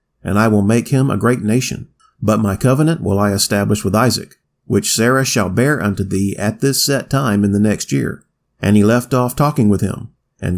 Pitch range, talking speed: 105-130 Hz, 215 wpm